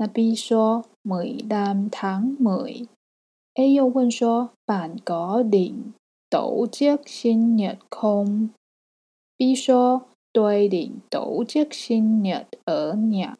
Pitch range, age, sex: 200-245 Hz, 20-39, female